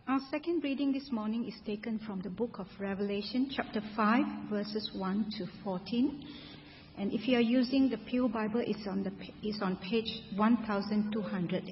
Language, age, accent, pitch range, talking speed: English, 50-69, Malaysian, 205-245 Hz, 185 wpm